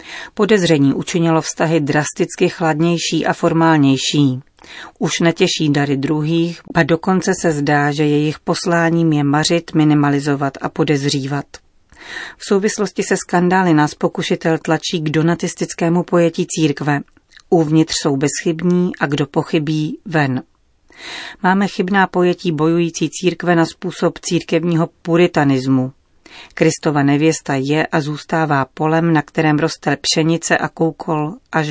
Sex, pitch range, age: female, 150-175 Hz, 40-59